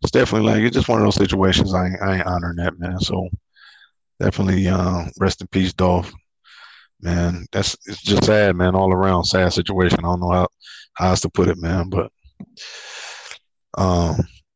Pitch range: 90-100 Hz